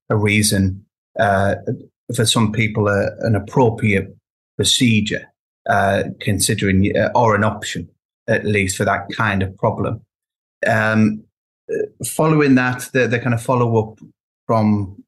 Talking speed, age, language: 130 wpm, 30-49, English